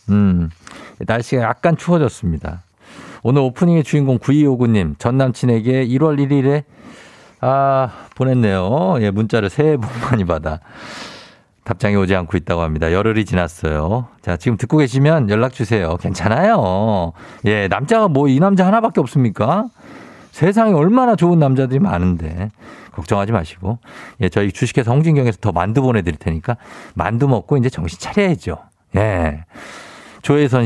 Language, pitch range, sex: Korean, 100-140 Hz, male